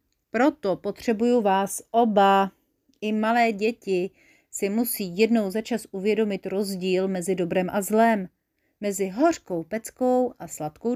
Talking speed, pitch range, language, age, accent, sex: 120 wpm, 180-230 Hz, Czech, 40-59, native, female